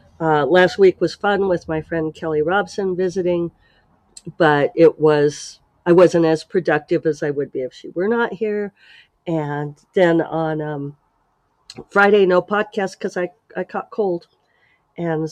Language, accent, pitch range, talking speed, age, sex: English, American, 155-205 Hz, 155 wpm, 50-69, female